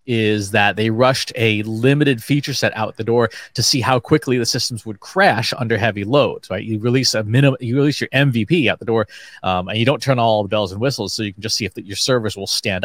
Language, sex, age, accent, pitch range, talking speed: English, male, 30-49, American, 105-130 Hz, 255 wpm